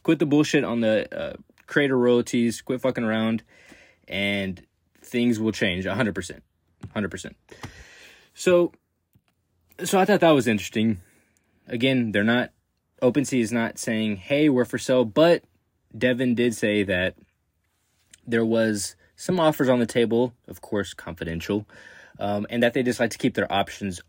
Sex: male